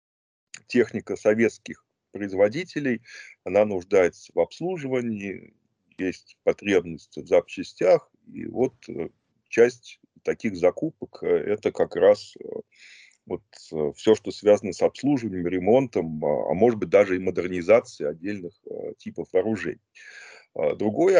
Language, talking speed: Russian, 100 wpm